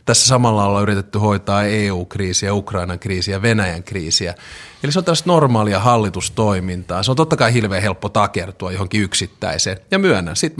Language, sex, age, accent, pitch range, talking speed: Finnish, male, 30-49, native, 95-125 Hz, 155 wpm